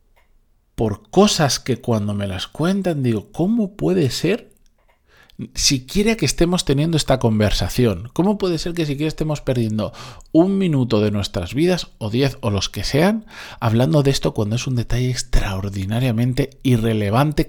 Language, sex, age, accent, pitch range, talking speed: Spanish, male, 40-59, Spanish, 110-150 Hz, 150 wpm